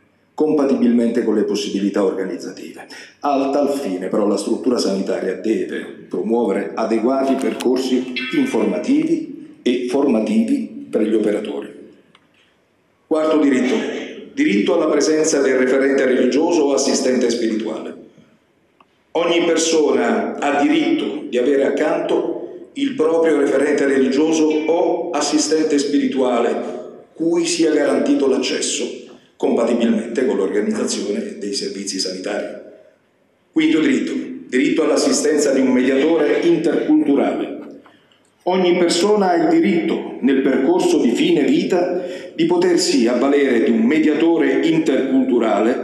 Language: Italian